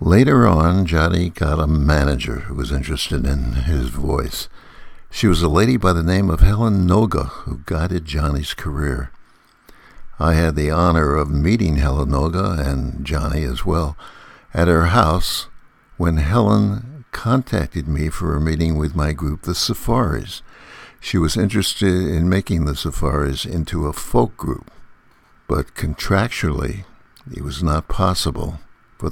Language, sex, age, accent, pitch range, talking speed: English, male, 60-79, American, 75-100 Hz, 145 wpm